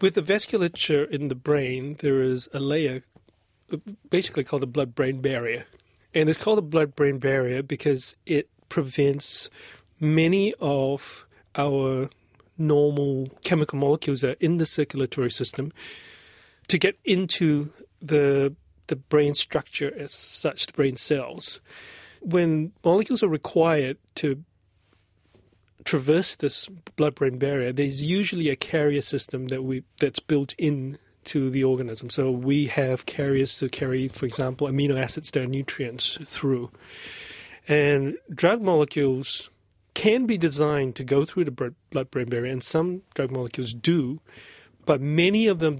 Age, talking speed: 30-49, 140 wpm